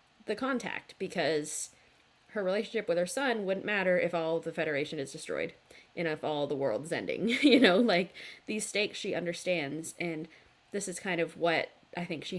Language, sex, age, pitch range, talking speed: English, female, 20-39, 165-235 Hz, 185 wpm